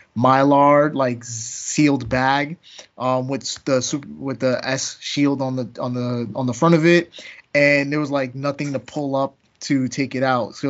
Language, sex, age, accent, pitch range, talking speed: English, male, 20-39, American, 125-140 Hz, 185 wpm